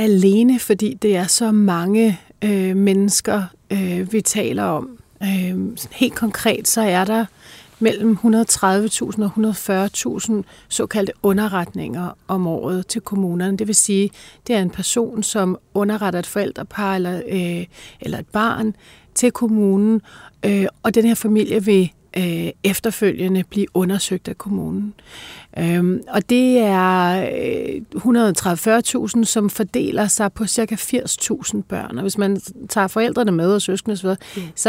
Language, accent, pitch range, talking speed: Danish, native, 185-220 Hz, 125 wpm